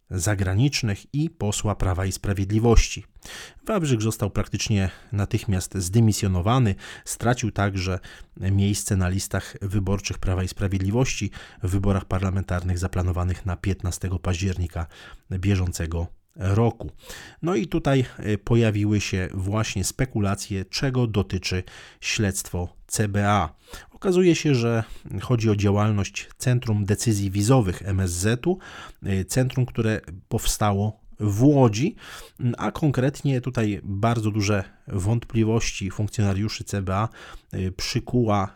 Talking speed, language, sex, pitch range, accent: 100 wpm, Polish, male, 95-115 Hz, native